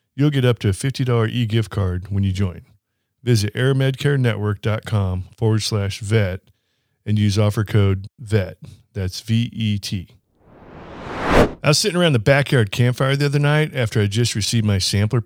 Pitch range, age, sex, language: 105-125 Hz, 40-59, male, English